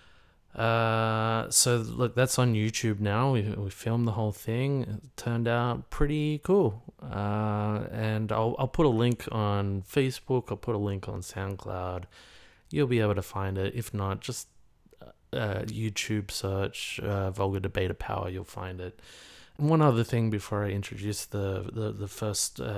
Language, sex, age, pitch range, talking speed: English, male, 20-39, 100-115 Hz, 170 wpm